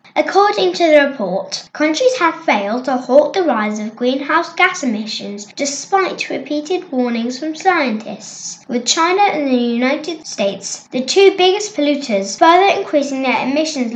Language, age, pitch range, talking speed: English, 10-29, 225-310 Hz, 145 wpm